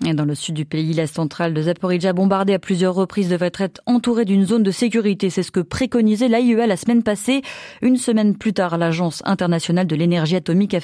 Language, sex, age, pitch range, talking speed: French, female, 30-49, 175-235 Hz, 215 wpm